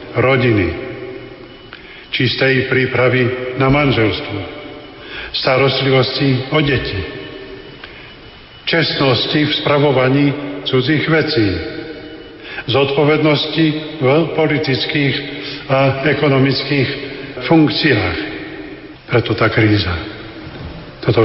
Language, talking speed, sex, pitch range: Slovak, 65 wpm, male, 110-130 Hz